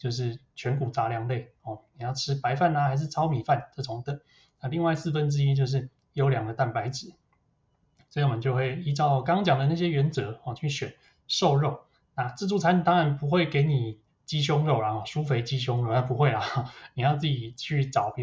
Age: 20-39